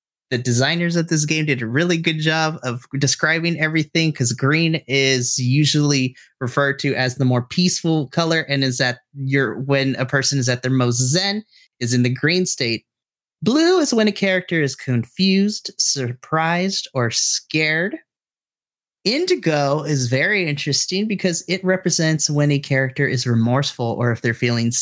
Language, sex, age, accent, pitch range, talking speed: English, male, 30-49, American, 130-170 Hz, 160 wpm